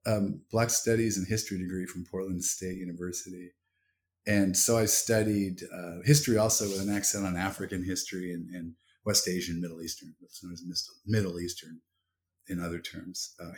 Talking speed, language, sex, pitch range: 170 wpm, English, male, 90-115 Hz